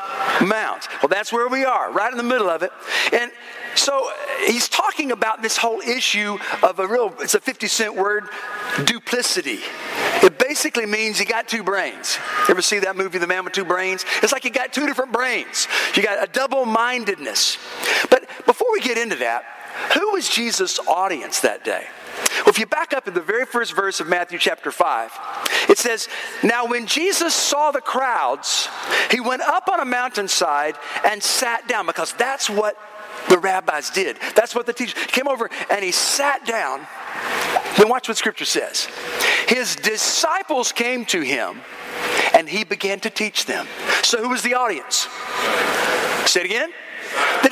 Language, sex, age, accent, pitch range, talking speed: English, male, 50-69, American, 210-285 Hz, 180 wpm